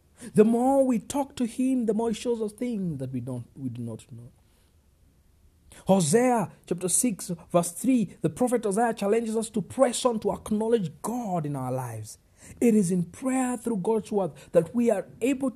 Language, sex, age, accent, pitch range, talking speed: English, male, 50-69, South African, 135-225 Hz, 190 wpm